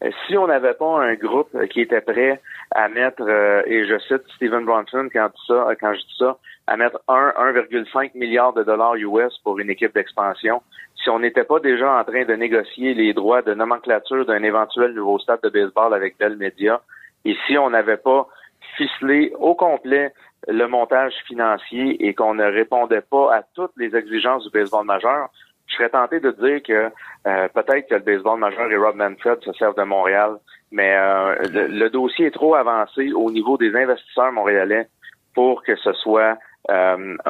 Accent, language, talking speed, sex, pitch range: Canadian, French, 185 wpm, male, 105-130 Hz